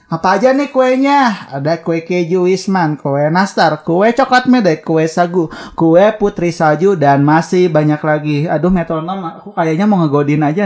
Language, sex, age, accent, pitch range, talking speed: Indonesian, male, 30-49, native, 145-205 Hz, 165 wpm